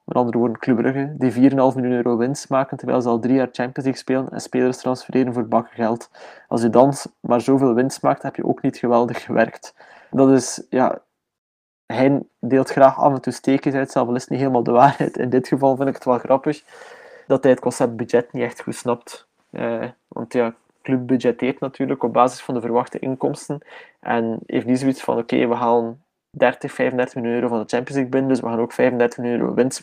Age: 20-39